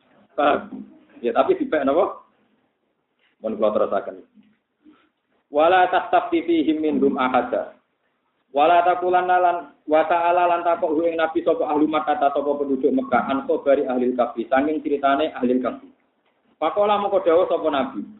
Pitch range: 135-180 Hz